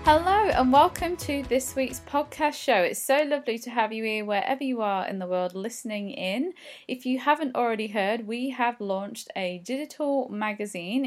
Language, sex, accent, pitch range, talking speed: English, female, British, 205-275 Hz, 185 wpm